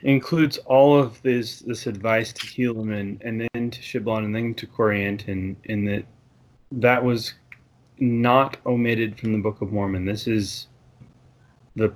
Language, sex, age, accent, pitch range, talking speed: English, male, 20-39, American, 110-125 Hz, 160 wpm